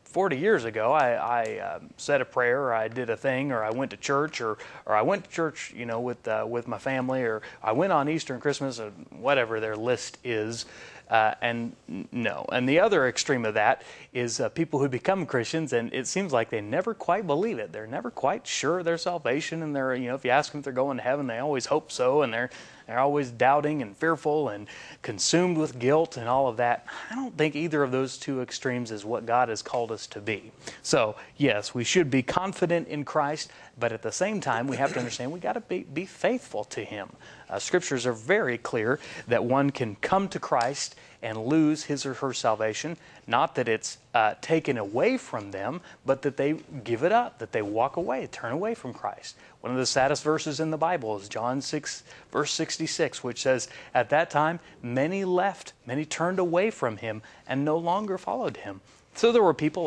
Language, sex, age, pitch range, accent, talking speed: English, male, 30-49, 120-155 Hz, American, 220 wpm